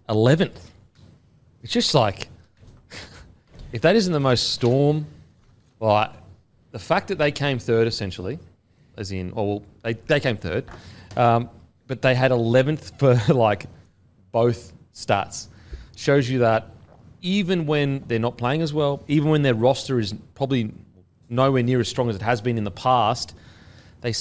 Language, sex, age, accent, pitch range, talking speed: English, male, 30-49, Australian, 110-135 Hz, 150 wpm